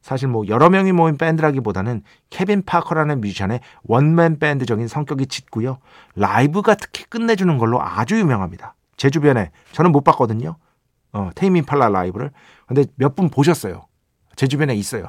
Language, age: Korean, 40-59